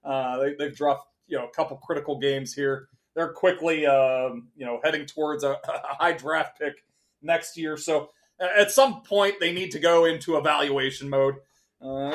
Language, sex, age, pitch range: English, male, 30-49, 140-175 Hz